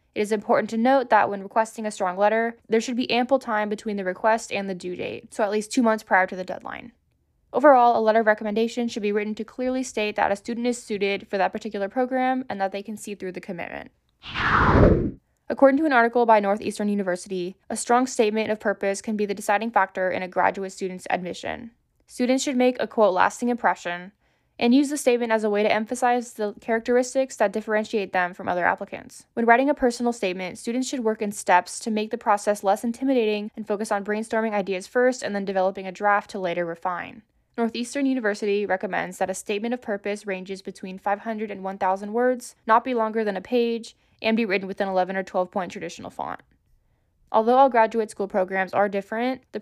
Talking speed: 210 wpm